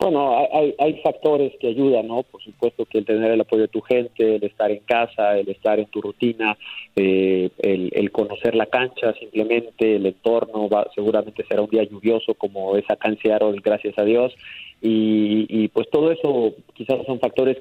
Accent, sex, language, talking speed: Mexican, male, Spanish, 190 wpm